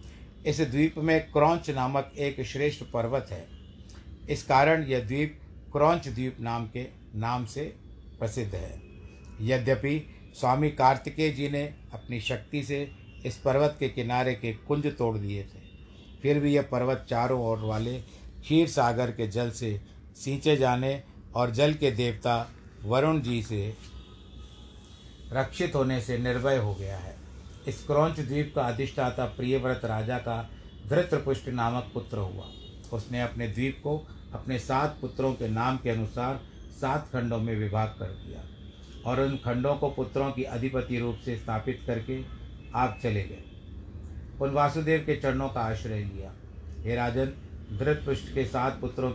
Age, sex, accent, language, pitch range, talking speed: 50-69, male, native, Hindi, 105-135 Hz, 150 wpm